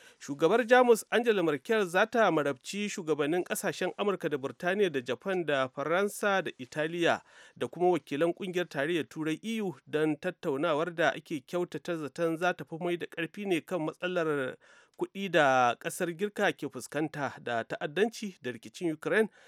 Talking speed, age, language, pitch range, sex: 155 wpm, 40-59, English, 145-200 Hz, male